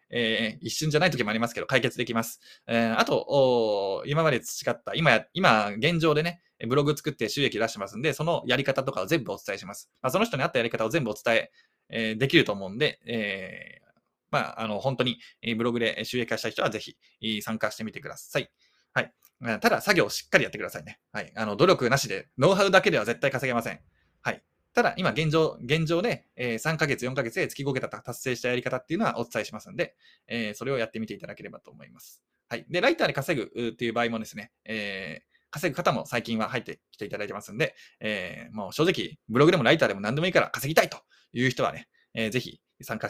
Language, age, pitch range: Japanese, 20-39, 115-140 Hz